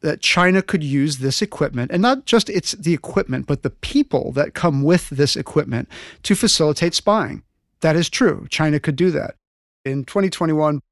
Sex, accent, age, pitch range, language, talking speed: male, American, 40-59, 135-170 Hz, English, 175 wpm